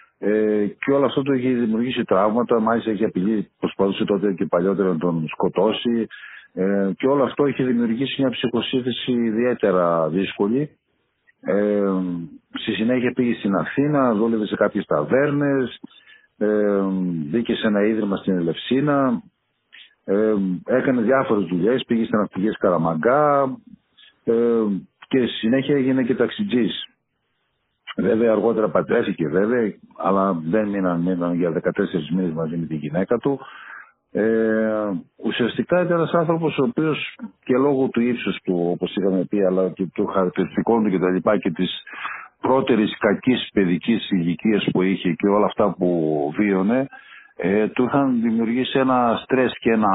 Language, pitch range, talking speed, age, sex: Greek, 95-125 Hz, 135 wpm, 50-69, male